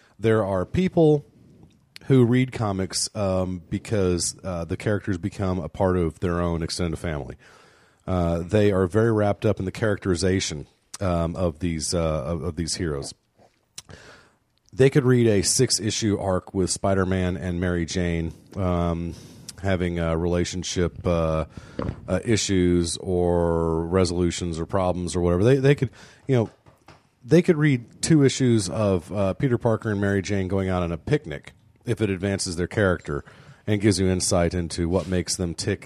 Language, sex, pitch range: English, male, 85-110 Hz